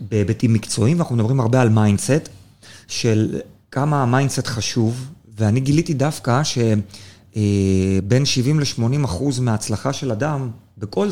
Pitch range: 115-155 Hz